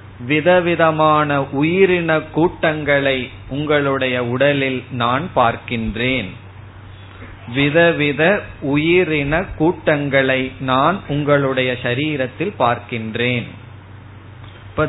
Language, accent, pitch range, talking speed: Tamil, native, 115-145 Hz, 45 wpm